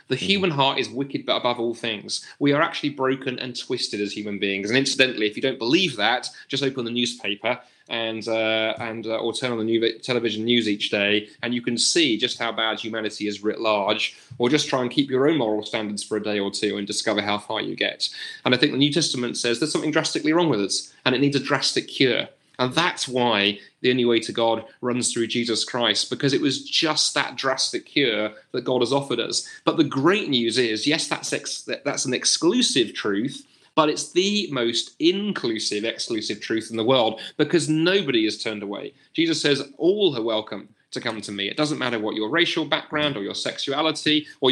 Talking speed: 220 wpm